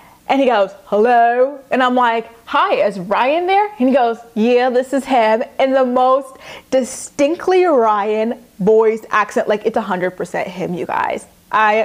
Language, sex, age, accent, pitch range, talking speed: English, female, 20-39, American, 195-245 Hz, 165 wpm